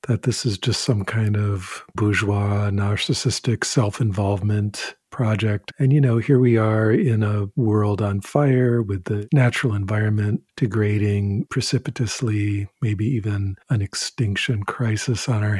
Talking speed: 135 wpm